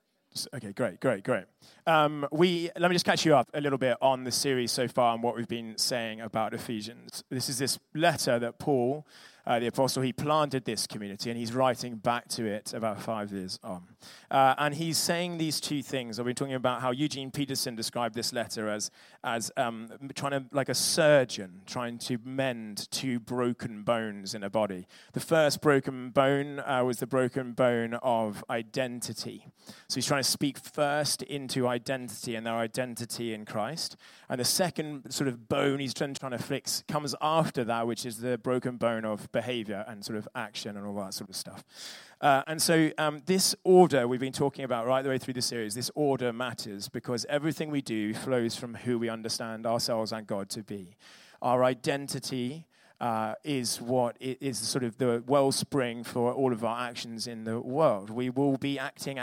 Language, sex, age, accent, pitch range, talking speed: English, male, 30-49, British, 115-140 Hz, 195 wpm